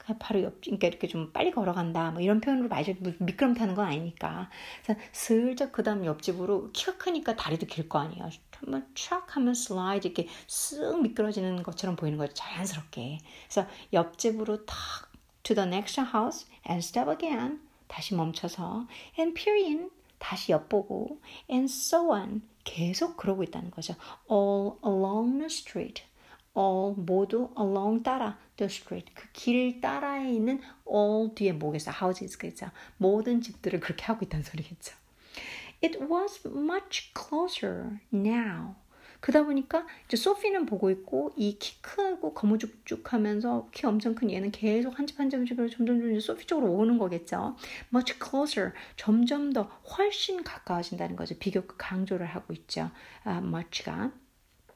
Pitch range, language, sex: 185-260 Hz, Korean, female